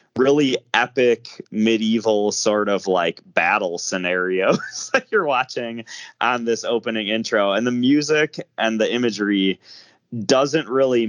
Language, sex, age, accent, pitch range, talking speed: English, male, 20-39, American, 95-125 Hz, 125 wpm